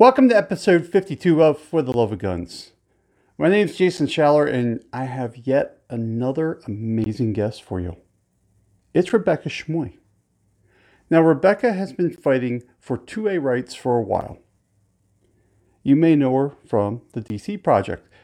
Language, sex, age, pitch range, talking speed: English, male, 40-59, 105-165 Hz, 150 wpm